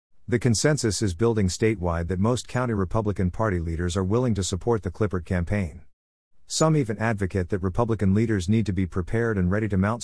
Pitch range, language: 90-115 Hz, English